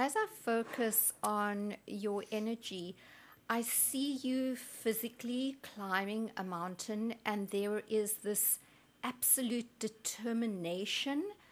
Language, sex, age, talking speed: English, female, 50-69, 100 wpm